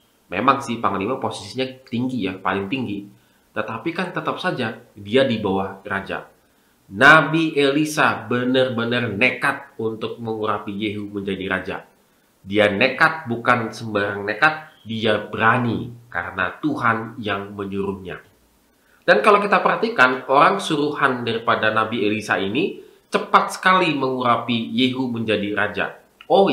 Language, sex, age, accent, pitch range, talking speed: Indonesian, male, 30-49, native, 105-150 Hz, 120 wpm